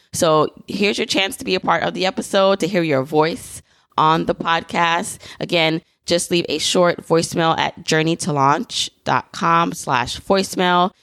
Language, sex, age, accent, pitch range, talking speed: English, female, 20-39, American, 150-185 Hz, 150 wpm